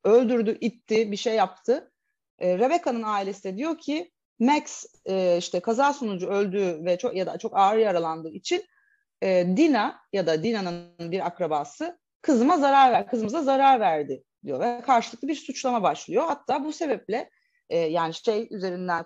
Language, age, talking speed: Turkish, 30-49, 160 wpm